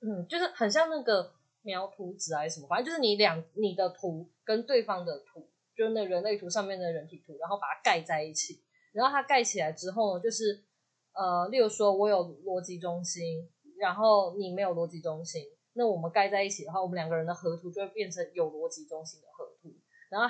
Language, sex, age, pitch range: Chinese, female, 20-39, 165-210 Hz